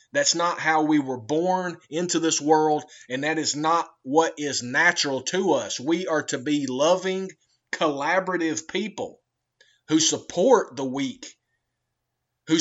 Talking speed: 145 wpm